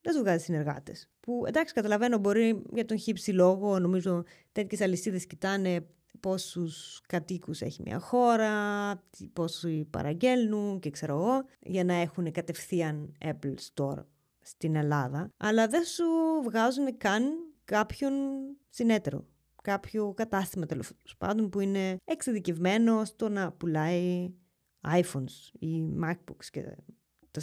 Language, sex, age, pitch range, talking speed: Greek, female, 20-39, 170-240 Hz, 120 wpm